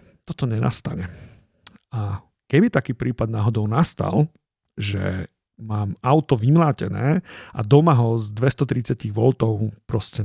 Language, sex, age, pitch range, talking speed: Slovak, male, 40-59, 115-145 Hz, 110 wpm